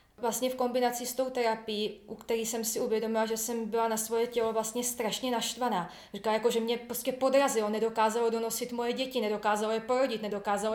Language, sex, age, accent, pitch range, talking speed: Czech, female, 20-39, native, 220-260 Hz, 190 wpm